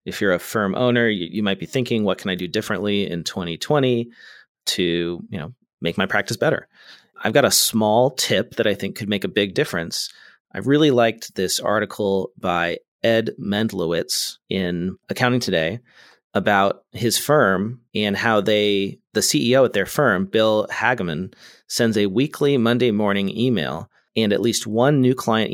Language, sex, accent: English, male, American